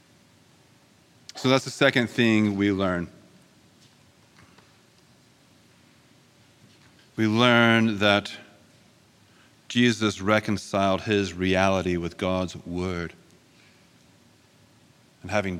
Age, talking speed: 40-59, 75 wpm